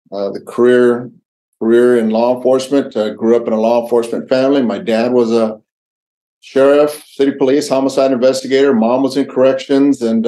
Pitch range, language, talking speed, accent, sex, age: 110-130 Hz, English, 170 wpm, American, male, 50-69